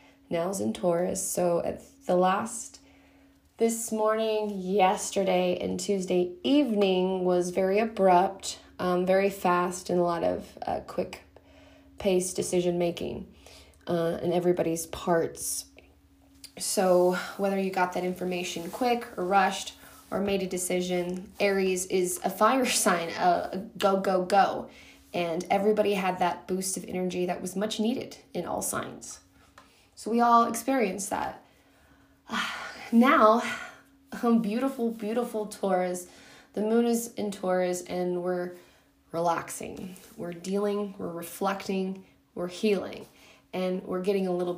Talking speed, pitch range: 130 wpm, 180-220 Hz